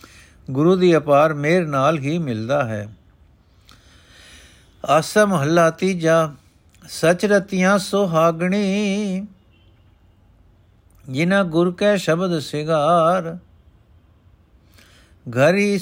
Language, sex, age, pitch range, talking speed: Punjabi, male, 60-79, 130-185 Hz, 70 wpm